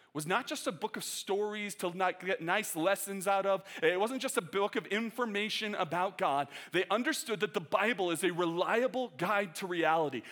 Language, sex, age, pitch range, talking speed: English, male, 30-49, 145-210 Hz, 200 wpm